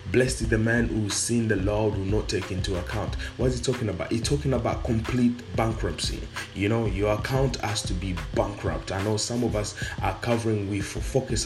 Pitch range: 95-115 Hz